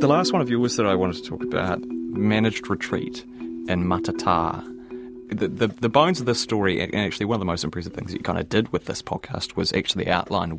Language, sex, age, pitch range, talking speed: English, male, 30-49, 85-105 Hz, 230 wpm